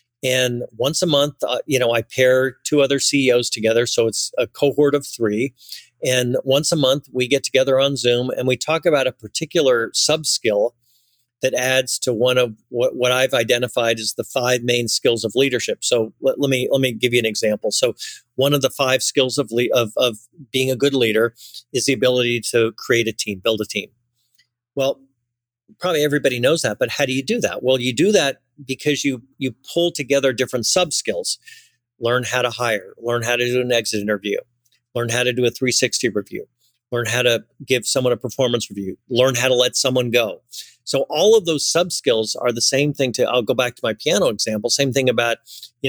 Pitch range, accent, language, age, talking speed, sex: 120-140 Hz, American, English, 40-59, 215 wpm, male